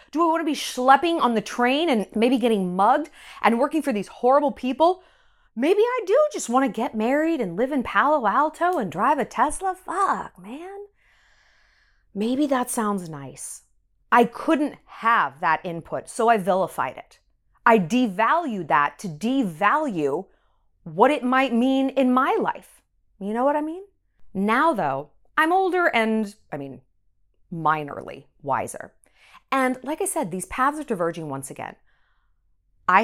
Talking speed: 155 wpm